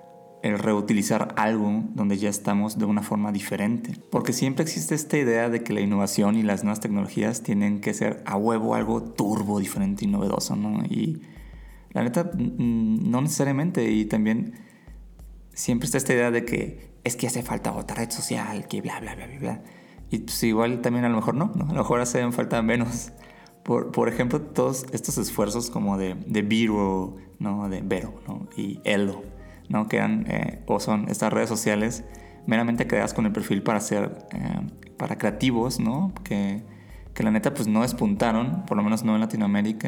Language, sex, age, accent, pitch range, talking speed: Spanish, male, 30-49, Mexican, 105-130 Hz, 185 wpm